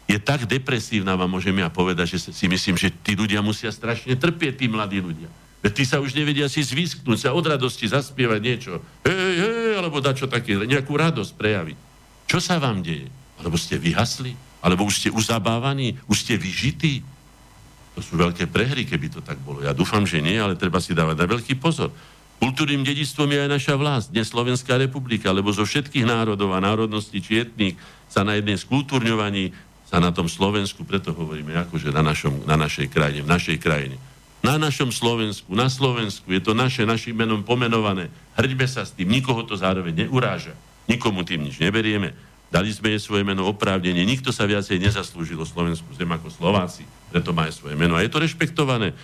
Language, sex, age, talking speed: Slovak, male, 60-79, 185 wpm